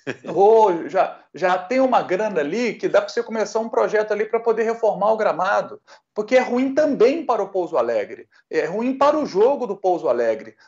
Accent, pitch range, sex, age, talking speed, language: Brazilian, 190-280 Hz, male, 40-59, 195 wpm, Portuguese